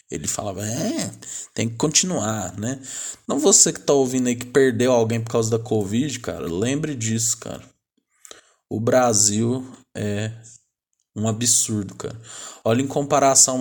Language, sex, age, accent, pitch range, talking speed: Portuguese, male, 20-39, Brazilian, 115-135 Hz, 145 wpm